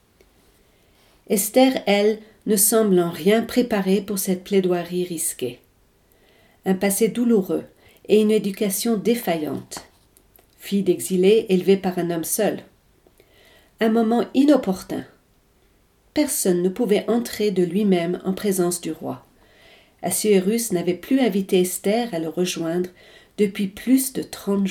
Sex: female